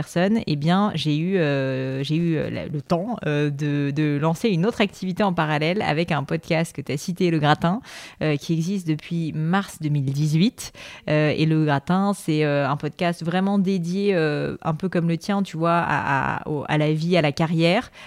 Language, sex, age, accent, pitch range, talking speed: French, female, 30-49, French, 155-180 Hz, 200 wpm